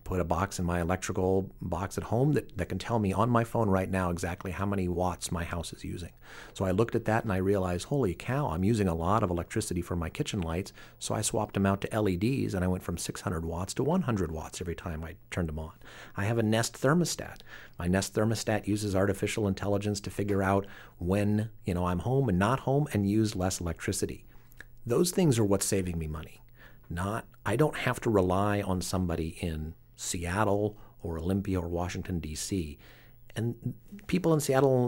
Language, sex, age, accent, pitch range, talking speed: English, male, 40-59, American, 90-110 Hz, 210 wpm